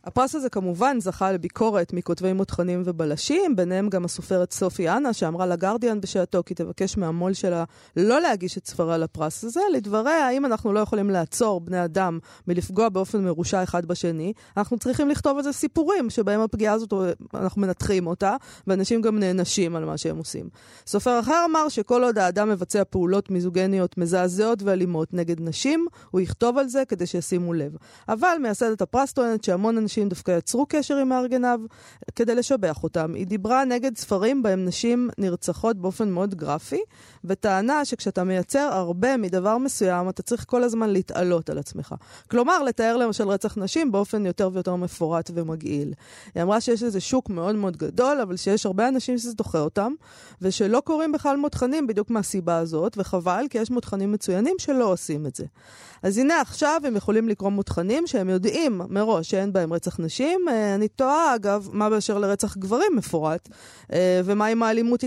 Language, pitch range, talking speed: Hebrew, 180-240 Hz, 150 wpm